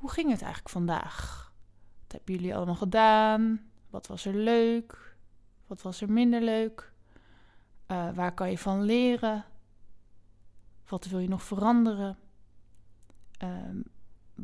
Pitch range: 170-220 Hz